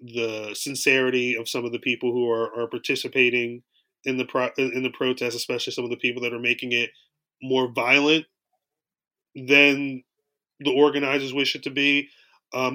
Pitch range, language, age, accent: 120-145 Hz, English, 20-39, American